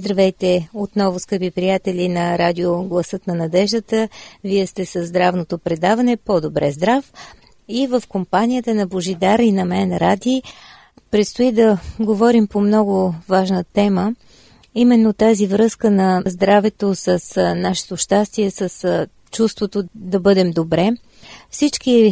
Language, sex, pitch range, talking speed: Bulgarian, female, 175-215 Hz, 120 wpm